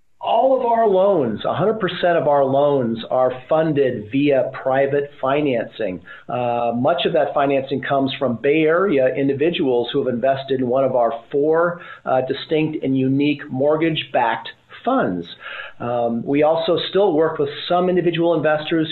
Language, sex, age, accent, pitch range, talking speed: English, male, 40-59, American, 130-155 Hz, 145 wpm